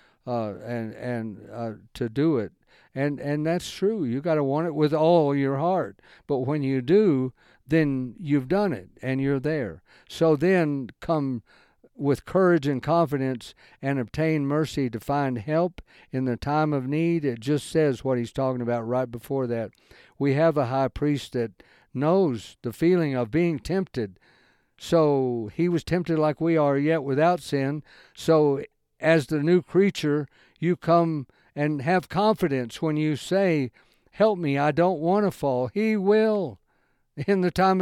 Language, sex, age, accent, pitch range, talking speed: English, male, 60-79, American, 130-165 Hz, 170 wpm